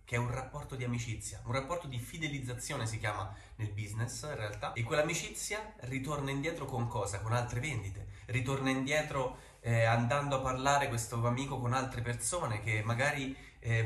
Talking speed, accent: 170 wpm, native